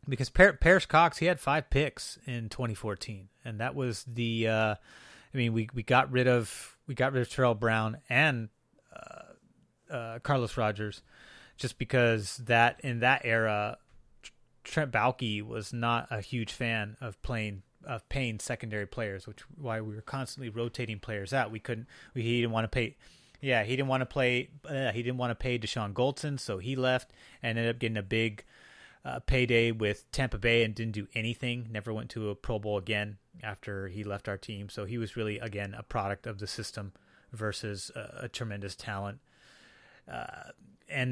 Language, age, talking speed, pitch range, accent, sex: English, 30-49, 185 wpm, 110-130 Hz, American, male